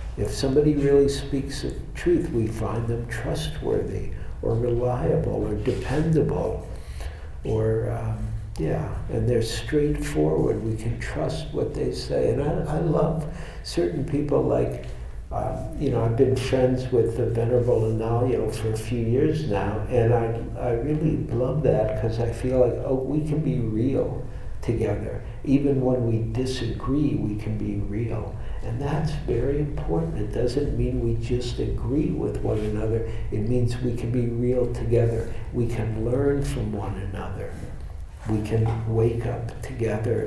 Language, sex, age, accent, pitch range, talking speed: English, male, 60-79, American, 110-135 Hz, 155 wpm